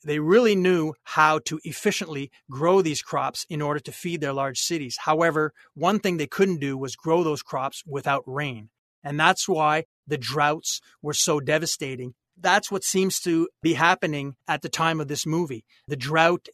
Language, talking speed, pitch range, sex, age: English, 180 wpm, 150-180 Hz, male, 30-49